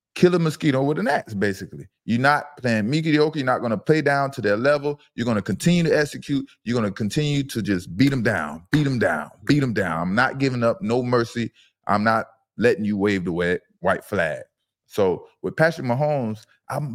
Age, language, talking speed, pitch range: 20-39, English, 210 wpm, 115-150 Hz